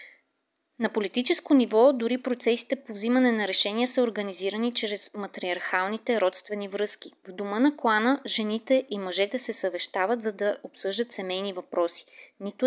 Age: 20-39